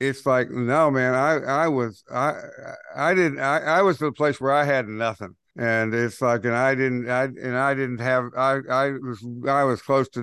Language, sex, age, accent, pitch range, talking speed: English, male, 60-79, American, 120-140 Hz, 215 wpm